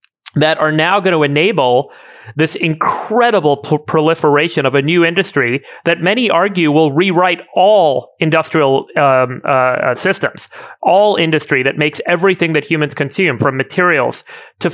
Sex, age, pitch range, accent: male, 30-49, 135-160 Hz, American